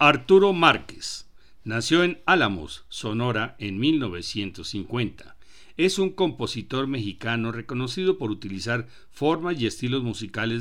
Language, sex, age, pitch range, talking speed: Spanish, male, 60-79, 110-150 Hz, 105 wpm